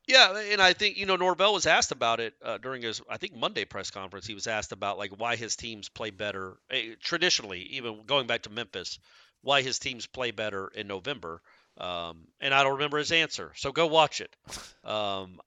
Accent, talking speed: American, 210 wpm